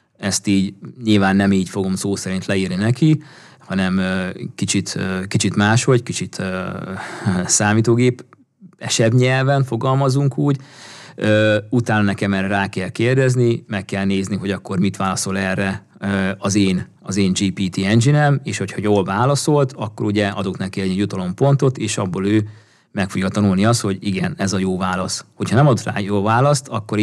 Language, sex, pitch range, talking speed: Hungarian, male, 95-115 Hz, 155 wpm